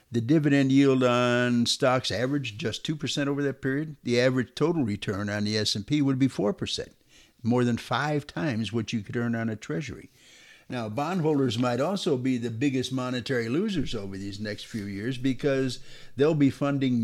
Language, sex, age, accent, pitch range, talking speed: English, male, 60-79, American, 110-140 Hz, 175 wpm